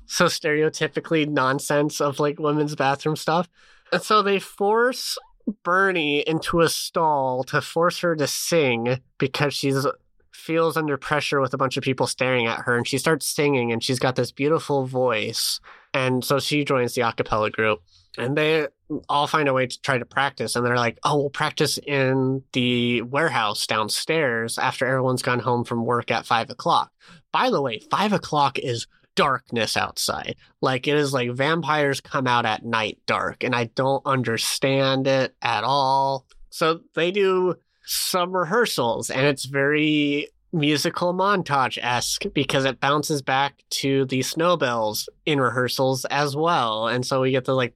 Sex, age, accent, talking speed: male, 20-39, American, 165 wpm